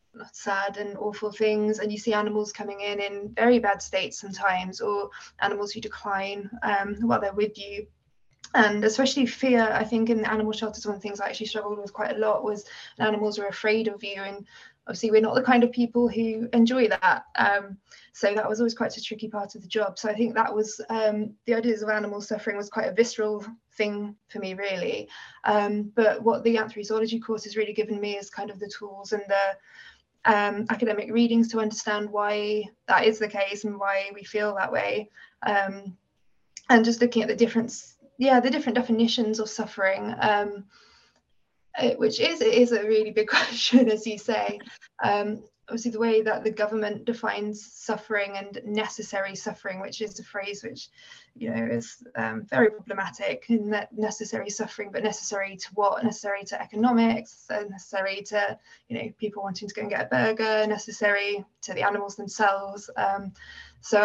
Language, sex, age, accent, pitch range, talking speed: English, female, 20-39, British, 205-225 Hz, 190 wpm